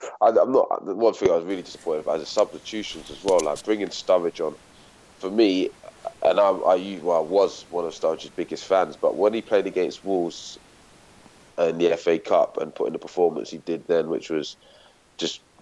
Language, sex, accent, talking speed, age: English, male, British, 195 wpm, 20-39